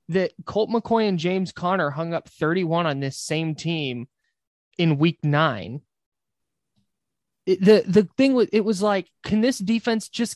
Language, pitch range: English, 150-195 Hz